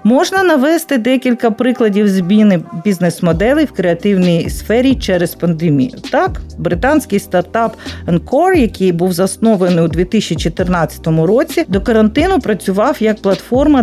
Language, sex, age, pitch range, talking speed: Ukrainian, female, 50-69, 175-250 Hz, 115 wpm